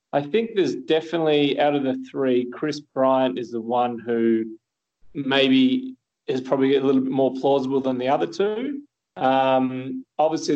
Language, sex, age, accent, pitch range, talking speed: English, male, 20-39, Australian, 120-150 Hz, 160 wpm